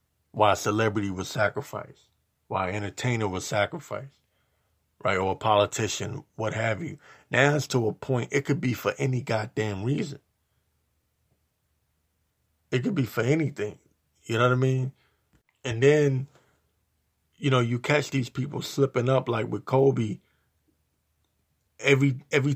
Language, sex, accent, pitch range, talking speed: English, male, American, 100-135 Hz, 140 wpm